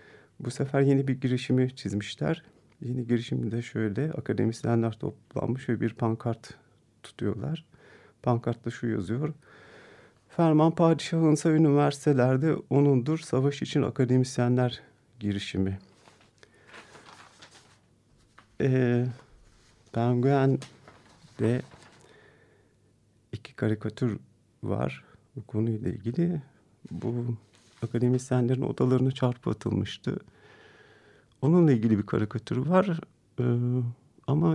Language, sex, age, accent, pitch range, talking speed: Turkish, male, 40-59, native, 115-140 Hz, 80 wpm